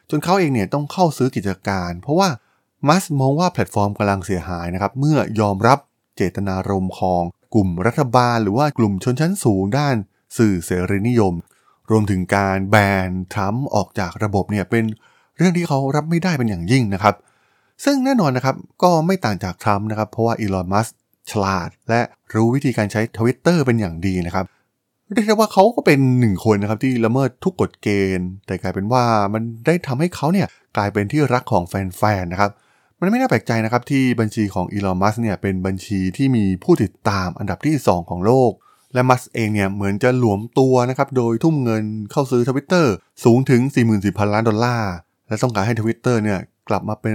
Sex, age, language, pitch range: male, 20-39, Thai, 100-135 Hz